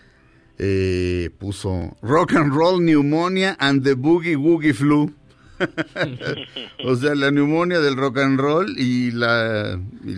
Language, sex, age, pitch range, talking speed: Spanish, male, 50-69, 100-135 Hz, 130 wpm